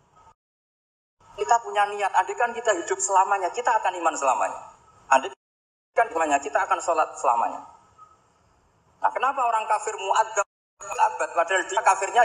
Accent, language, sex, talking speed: native, Indonesian, male, 130 wpm